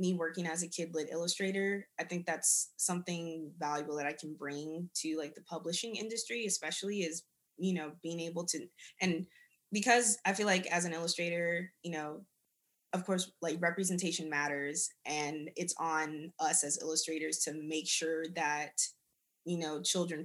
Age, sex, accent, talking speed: 20-39, female, American, 165 wpm